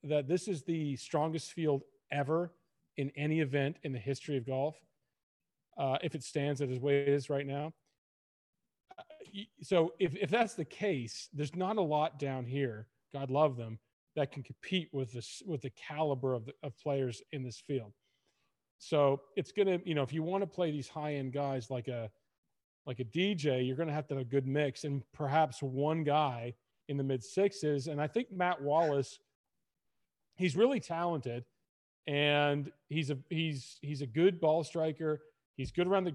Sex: male